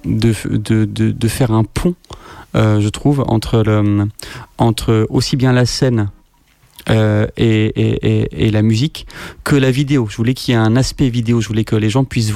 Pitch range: 110-130 Hz